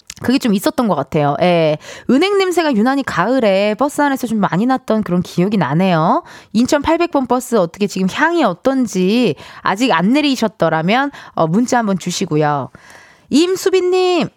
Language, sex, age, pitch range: Korean, female, 20-39, 200-325 Hz